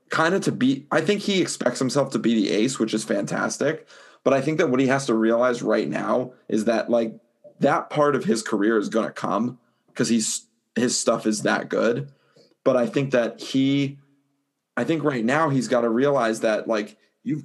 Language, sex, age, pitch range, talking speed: English, male, 20-39, 115-135 Hz, 215 wpm